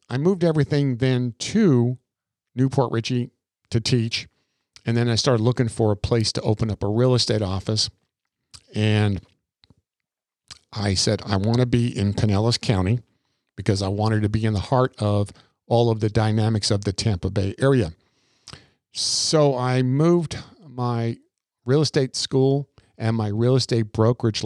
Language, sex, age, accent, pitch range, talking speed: English, male, 50-69, American, 105-125 Hz, 155 wpm